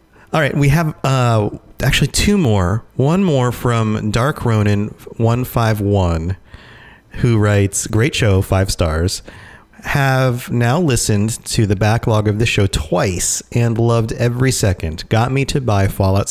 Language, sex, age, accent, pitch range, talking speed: English, male, 30-49, American, 100-125 Hz, 145 wpm